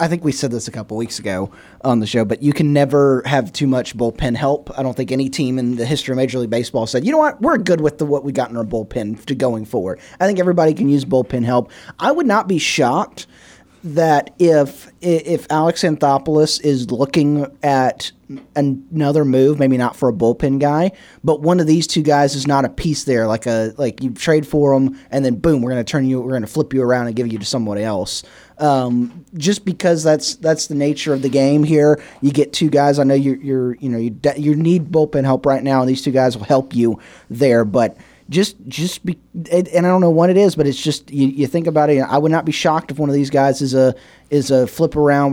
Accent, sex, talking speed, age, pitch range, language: American, male, 255 wpm, 30-49, 130-155 Hz, English